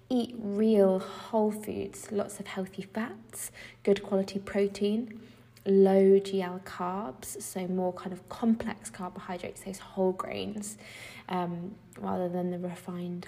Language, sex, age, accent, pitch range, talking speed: English, female, 20-39, British, 185-205 Hz, 125 wpm